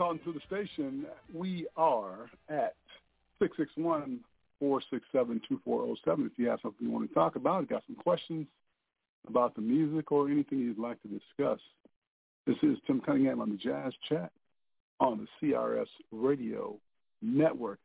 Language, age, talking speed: English, 50-69, 140 wpm